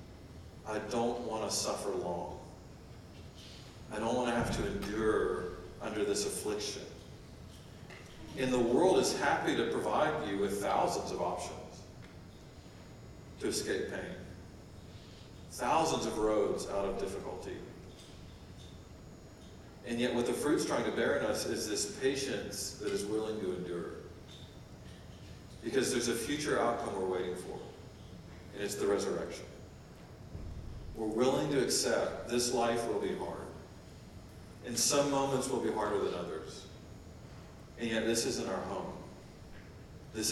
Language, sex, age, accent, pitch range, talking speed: English, male, 40-59, American, 90-120 Hz, 135 wpm